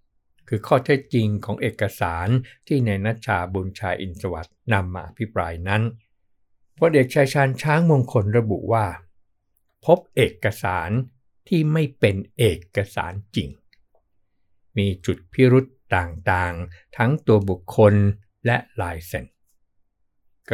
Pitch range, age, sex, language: 95-125 Hz, 60-79, male, Thai